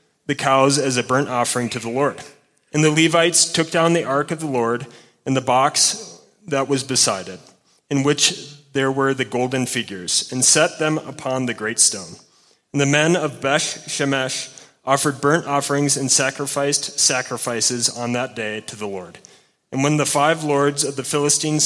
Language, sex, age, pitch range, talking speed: English, male, 30-49, 125-150 Hz, 185 wpm